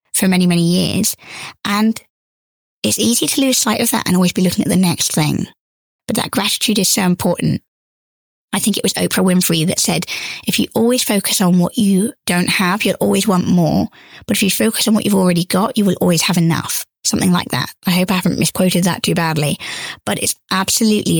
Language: English